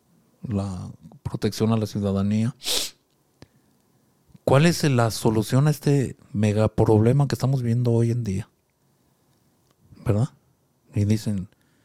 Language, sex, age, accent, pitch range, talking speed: Spanish, male, 50-69, Mexican, 110-135 Hz, 105 wpm